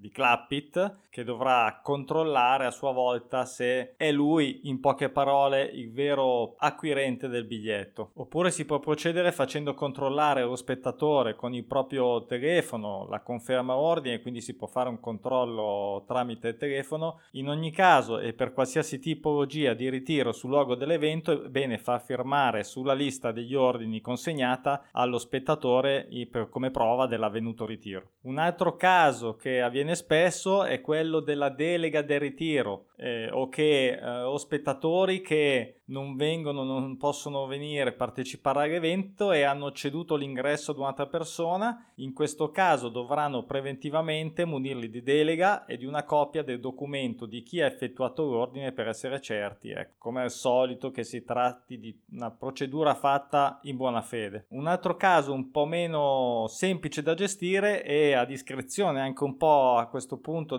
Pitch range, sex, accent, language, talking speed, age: 125-150 Hz, male, native, Italian, 155 wpm, 20-39